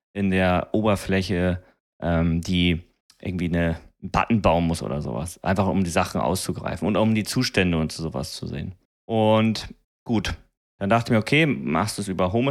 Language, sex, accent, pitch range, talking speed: German, male, German, 95-115 Hz, 185 wpm